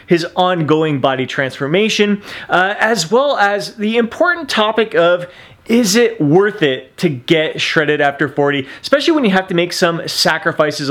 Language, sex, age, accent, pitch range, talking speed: English, male, 30-49, American, 135-185 Hz, 160 wpm